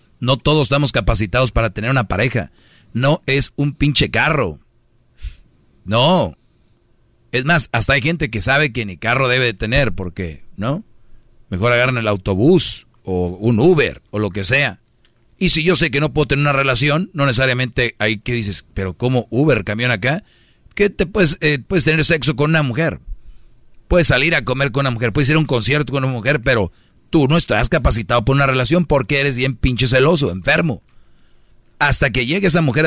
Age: 40-59